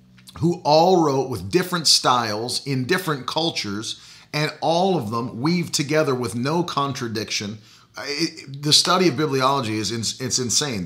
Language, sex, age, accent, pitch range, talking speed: English, male, 40-59, American, 115-165 Hz, 150 wpm